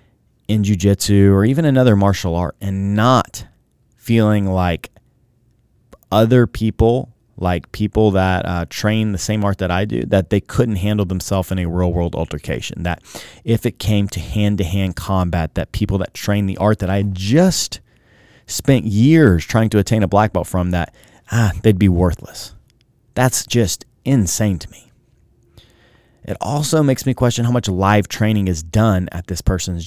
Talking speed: 165 wpm